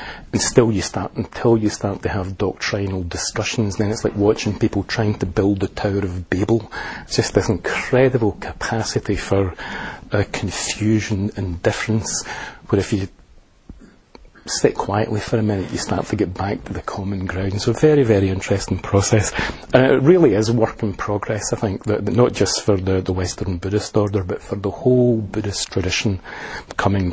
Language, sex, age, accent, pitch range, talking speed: English, male, 40-59, British, 95-110 Hz, 180 wpm